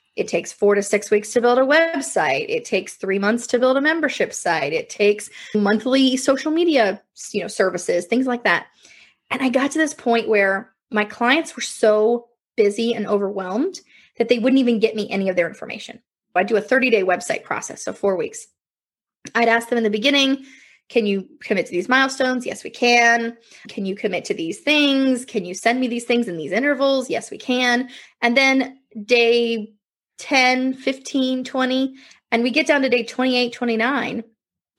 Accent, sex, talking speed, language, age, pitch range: American, female, 190 wpm, English, 20-39, 220-275 Hz